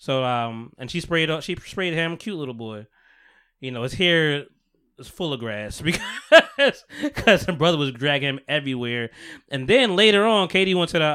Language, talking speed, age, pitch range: English, 190 wpm, 20-39, 120-185 Hz